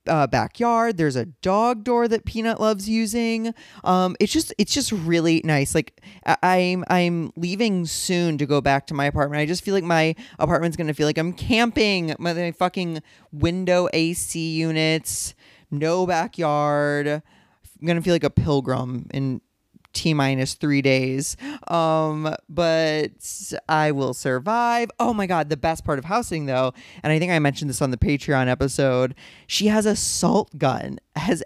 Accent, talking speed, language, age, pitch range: American, 165 wpm, English, 20-39, 140-190 Hz